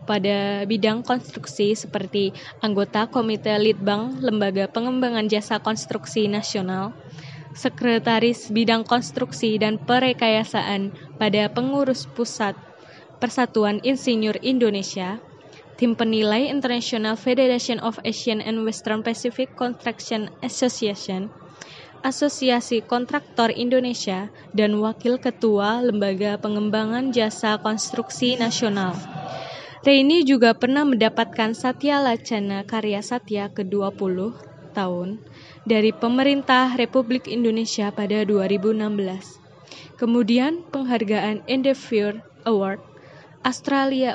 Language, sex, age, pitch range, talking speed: Indonesian, female, 10-29, 205-245 Hz, 90 wpm